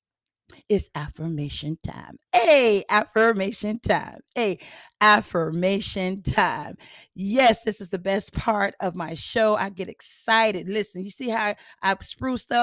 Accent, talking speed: American, 135 wpm